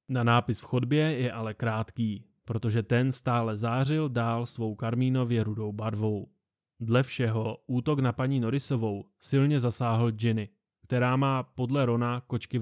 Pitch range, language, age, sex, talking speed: 115-130 Hz, Czech, 20-39, male, 145 wpm